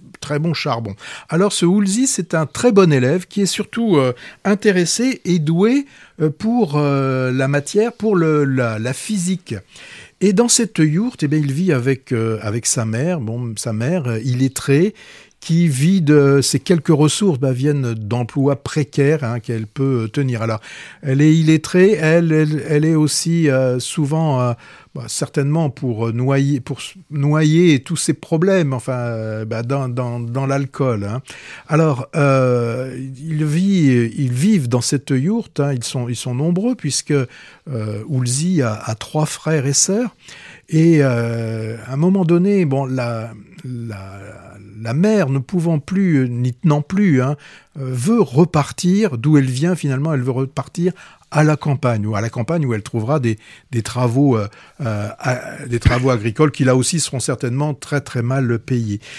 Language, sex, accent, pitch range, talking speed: French, male, French, 125-170 Hz, 170 wpm